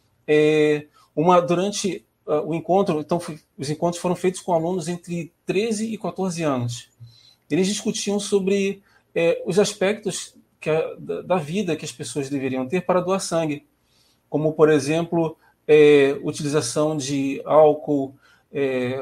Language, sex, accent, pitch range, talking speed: Portuguese, male, Brazilian, 140-180 Hz, 140 wpm